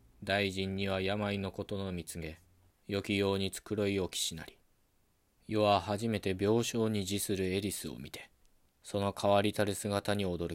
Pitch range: 95-100 Hz